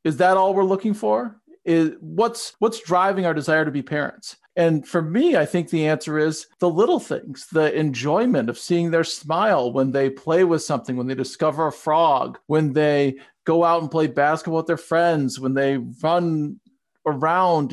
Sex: male